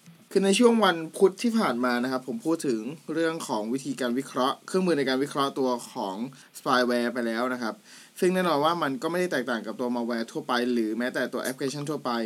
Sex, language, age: male, Thai, 20-39